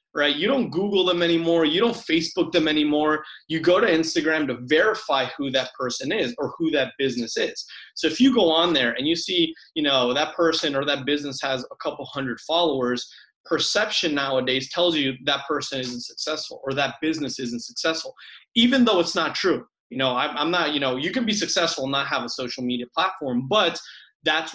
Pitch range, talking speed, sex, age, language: 135-175 Hz, 210 wpm, male, 20-39, English